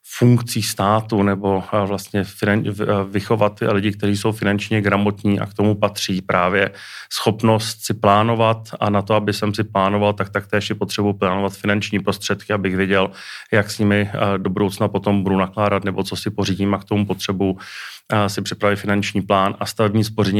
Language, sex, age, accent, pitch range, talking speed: Czech, male, 30-49, native, 95-105 Hz, 170 wpm